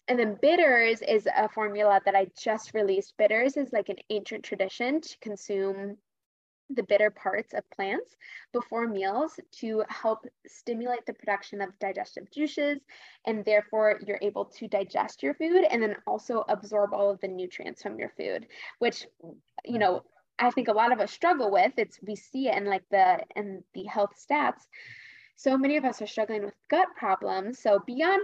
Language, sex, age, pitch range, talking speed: English, female, 10-29, 205-265 Hz, 180 wpm